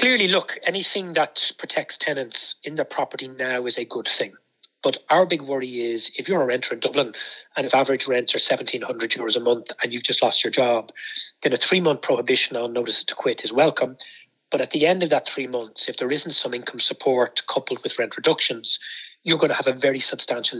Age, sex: 30-49, male